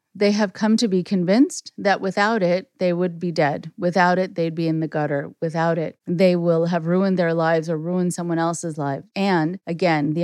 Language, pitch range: English, 165-200 Hz